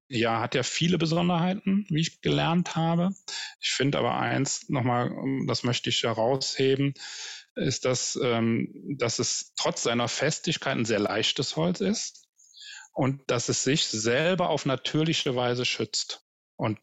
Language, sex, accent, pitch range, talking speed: German, male, German, 110-145 Hz, 150 wpm